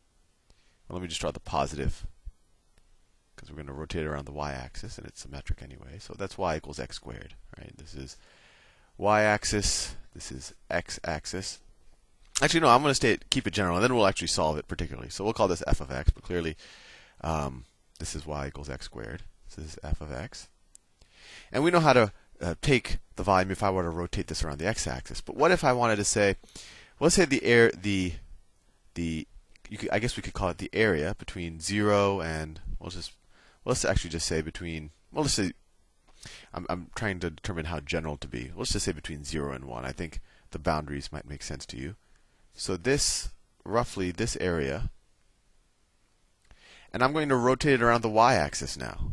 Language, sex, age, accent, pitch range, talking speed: English, male, 30-49, American, 75-105 Hz, 195 wpm